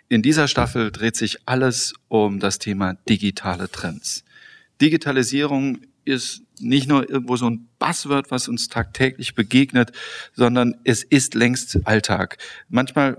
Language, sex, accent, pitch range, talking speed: German, male, German, 120-140 Hz, 130 wpm